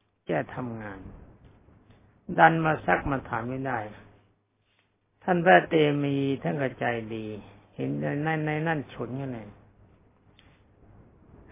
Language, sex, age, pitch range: Thai, male, 60-79, 100-145 Hz